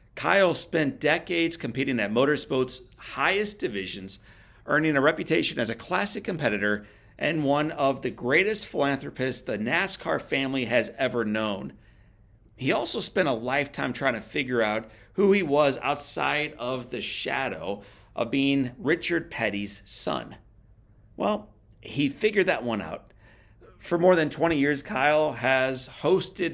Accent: American